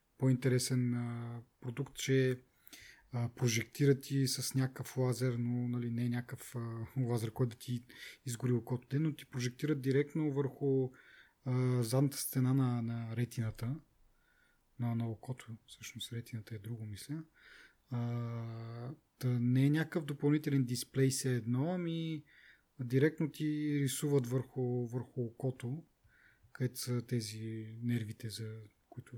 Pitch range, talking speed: 120-145 Hz, 130 wpm